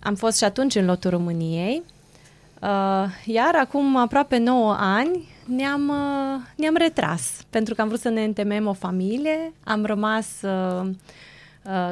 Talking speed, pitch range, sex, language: 150 wpm, 185-255 Hz, female, Romanian